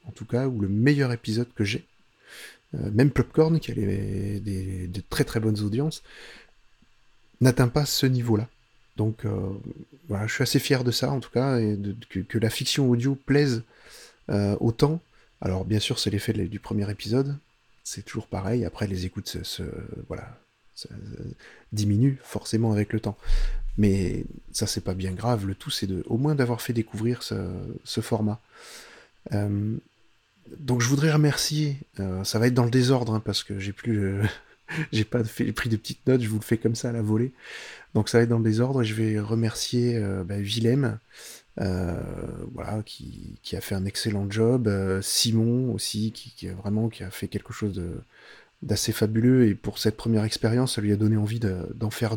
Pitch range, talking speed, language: 105-120 Hz, 200 wpm, French